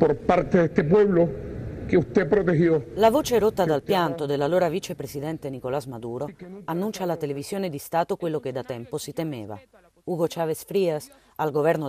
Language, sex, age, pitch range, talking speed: Italian, female, 40-59, 135-175 Hz, 125 wpm